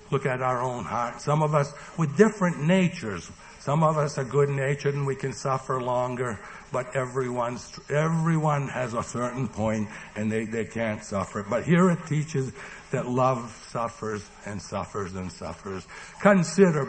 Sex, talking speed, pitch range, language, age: male, 160 wpm, 110-165 Hz, English, 60-79